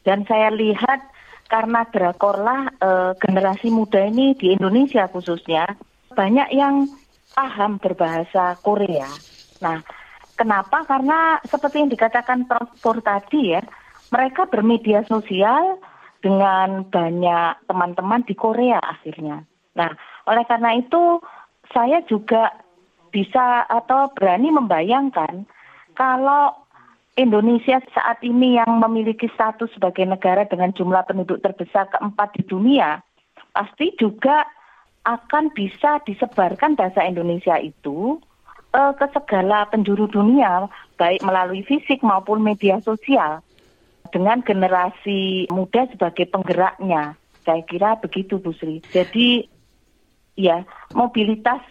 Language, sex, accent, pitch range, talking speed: Indonesian, female, native, 185-245 Hz, 105 wpm